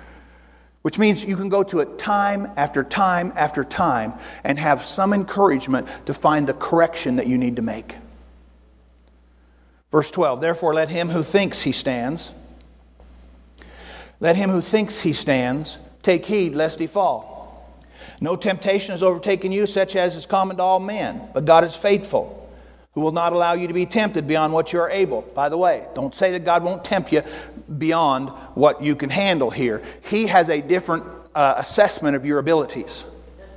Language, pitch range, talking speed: English, 135-195 Hz, 175 wpm